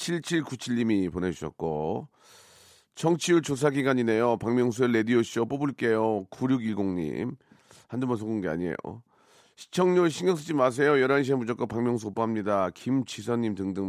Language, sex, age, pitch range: Korean, male, 40-59, 110-150 Hz